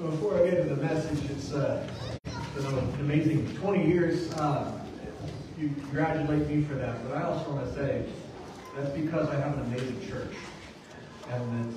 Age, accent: 30-49, American